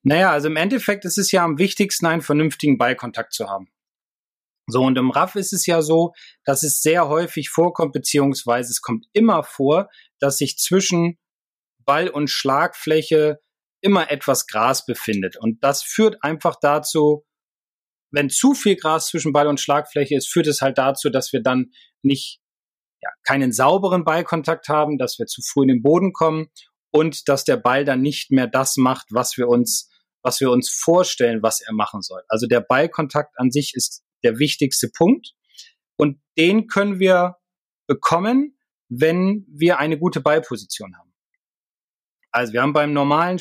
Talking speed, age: 170 wpm, 30-49